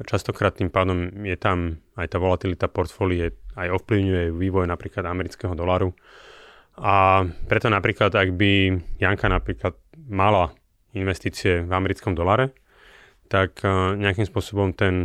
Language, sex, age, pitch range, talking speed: Slovak, male, 30-49, 90-100 Hz, 125 wpm